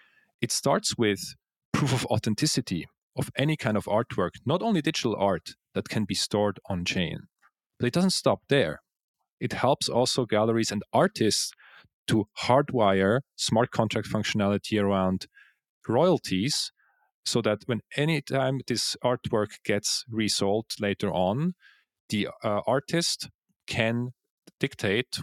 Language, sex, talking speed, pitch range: English, male, 130 wpm, 100-125 Hz